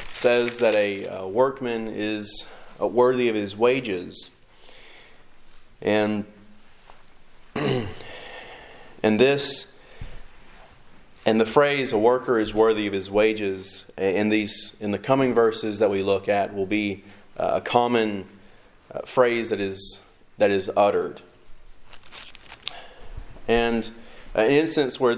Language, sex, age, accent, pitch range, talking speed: English, male, 30-49, American, 100-120 Hz, 120 wpm